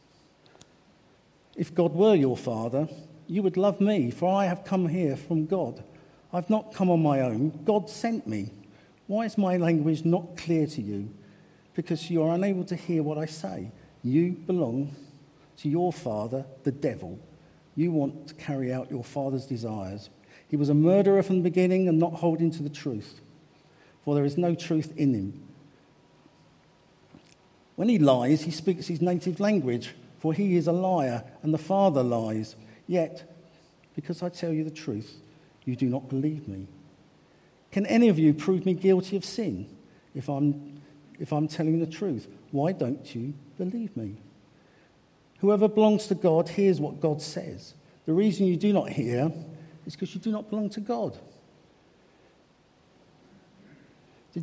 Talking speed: 165 wpm